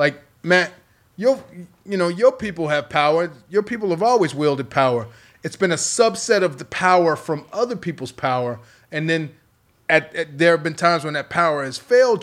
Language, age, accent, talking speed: English, 30-49, American, 190 wpm